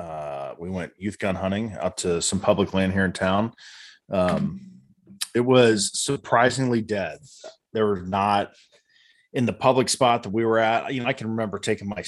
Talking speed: 185 wpm